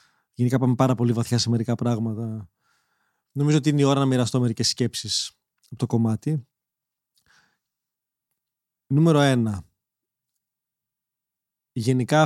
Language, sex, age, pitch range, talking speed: Greek, male, 20-39, 125-160 Hz, 115 wpm